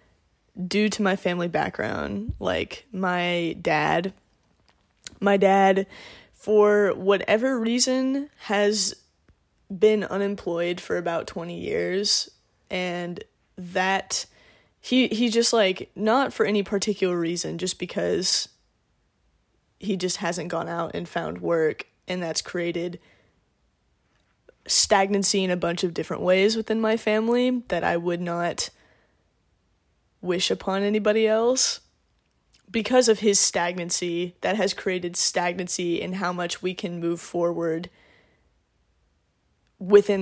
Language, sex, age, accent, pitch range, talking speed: English, female, 10-29, American, 175-205 Hz, 115 wpm